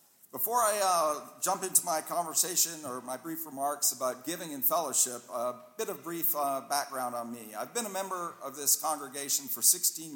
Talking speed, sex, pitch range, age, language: 190 wpm, male, 135-185 Hz, 50-69, English